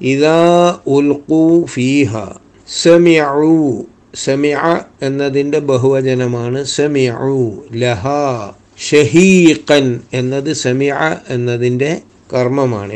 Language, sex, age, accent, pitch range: Malayalam, male, 60-79, native, 125-155 Hz